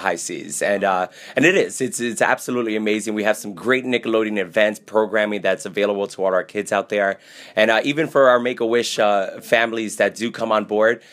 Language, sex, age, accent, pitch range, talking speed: English, male, 30-49, American, 105-125 Hz, 210 wpm